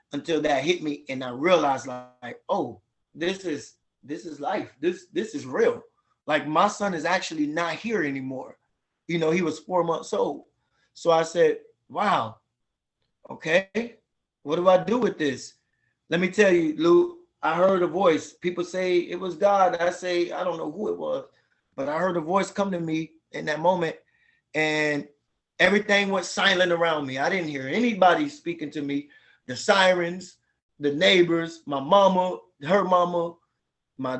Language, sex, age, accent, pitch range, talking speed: English, male, 20-39, American, 155-195 Hz, 175 wpm